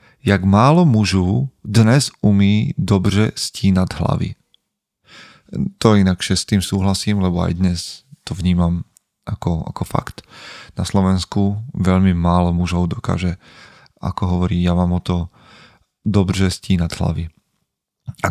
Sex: male